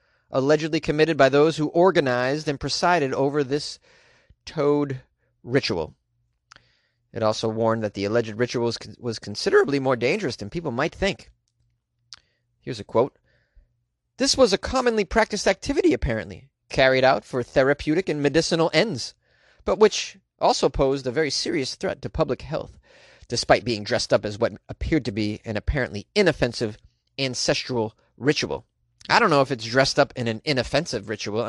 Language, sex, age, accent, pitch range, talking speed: English, male, 30-49, American, 115-150 Hz, 150 wpm